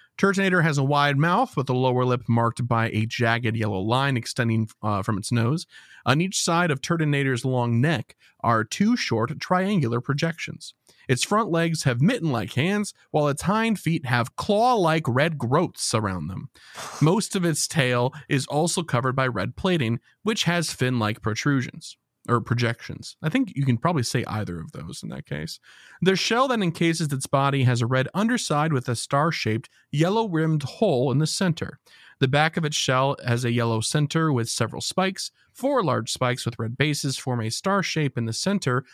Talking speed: 185 wpm